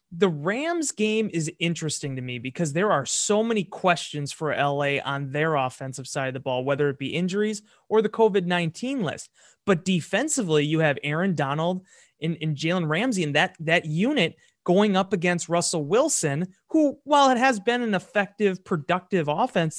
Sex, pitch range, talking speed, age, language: male, 155-215 Hz, 175 wpm, 30-49, English